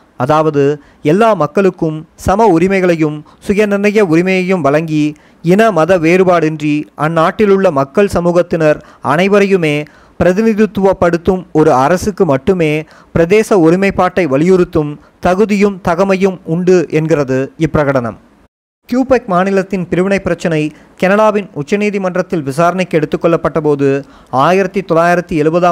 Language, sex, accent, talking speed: Tamil, male, native, 85 wpm